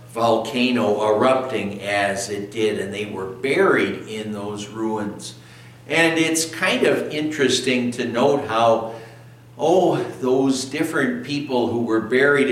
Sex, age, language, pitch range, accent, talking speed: male, 60-79, English, 120-155 Hz, American, 130 wpm